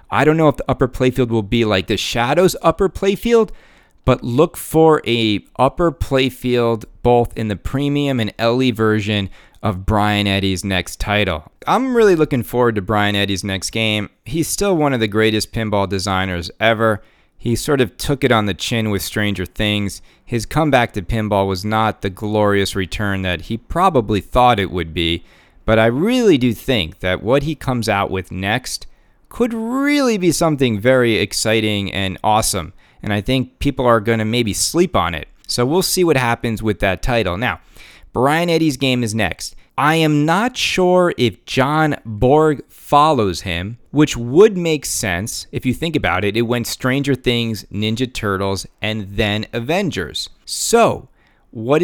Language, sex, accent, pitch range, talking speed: English, male, American, 100-135 Hz, 175 wpm